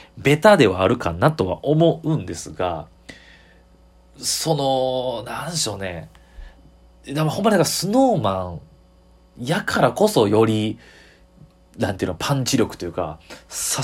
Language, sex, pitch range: Japanese, male, 90-130 Hz